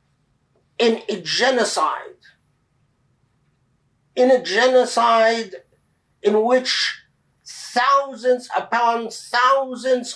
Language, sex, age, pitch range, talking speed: English, male, 50-69, 220-270 Hz, 65 wpm